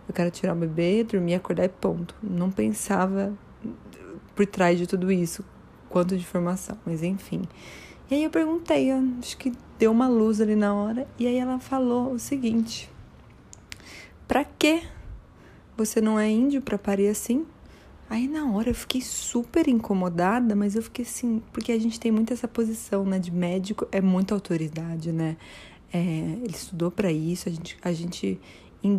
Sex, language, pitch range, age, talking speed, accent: female, Portuguese, 175-225 Hz, 20-39, 175 wpm, Brazilian